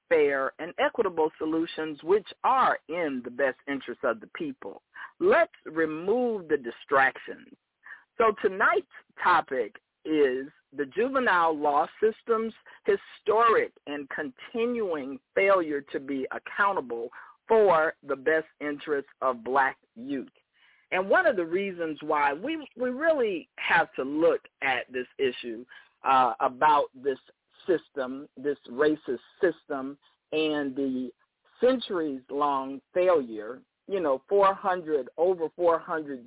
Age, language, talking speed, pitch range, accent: 50-69, English, 115 wpm, 145-230 Hz, American